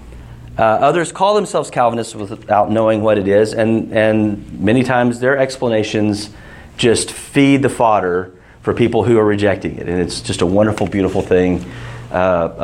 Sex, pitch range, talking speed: male, 95-130 Hz, 160 wpm